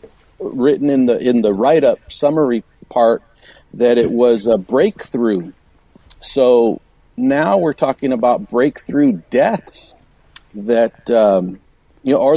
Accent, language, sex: American, English, male